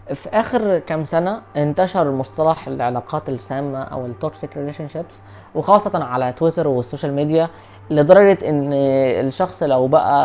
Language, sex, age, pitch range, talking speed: Arabic, female, 20-39, 125-165 Hz, 130 wpm